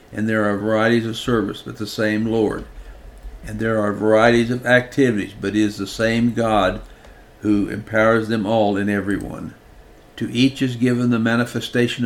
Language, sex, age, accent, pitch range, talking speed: English, male, 60-79, American, 105-120 Hz, 170 wpm